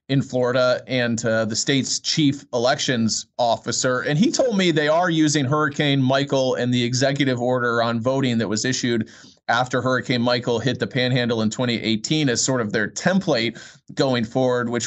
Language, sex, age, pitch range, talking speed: English, male, 30-49, 115-140 Hz, 175 wpm